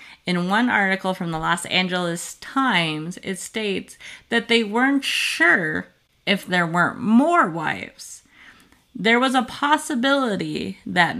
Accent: American